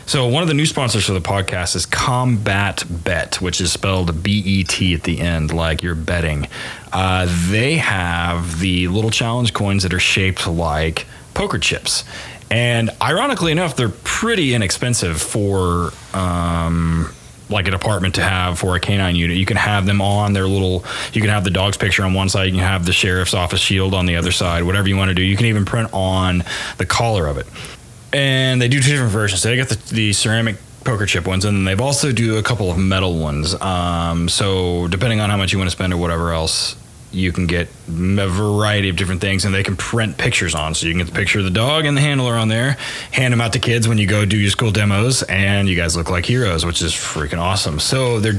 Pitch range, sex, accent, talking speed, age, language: 90-115 Hz, male, American, 225 wpm, 20-39, English